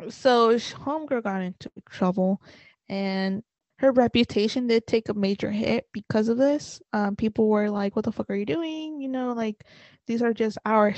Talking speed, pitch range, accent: 180 wpm, 205-240 Hz, American